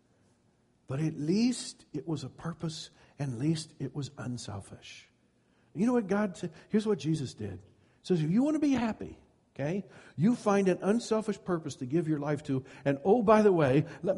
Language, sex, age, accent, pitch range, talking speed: English, male, 60-79, American, 120-160 Hz, 195 wpm